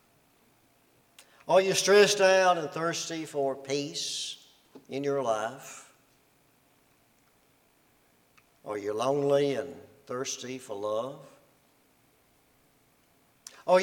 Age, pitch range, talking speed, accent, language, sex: 60-79, 135-165 Hz, 80 wpm, American, English, male